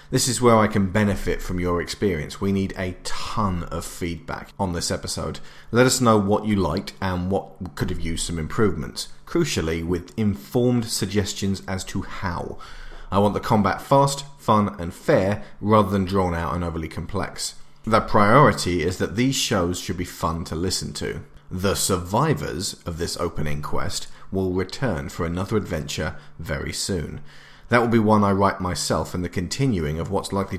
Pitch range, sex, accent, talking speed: 85-110 Hz, male, British, 180 wpm